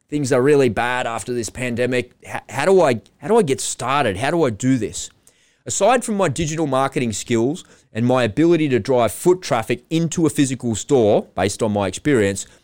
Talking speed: 195 wpm